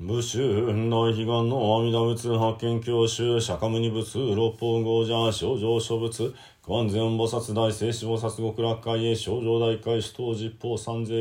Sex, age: male, 40-59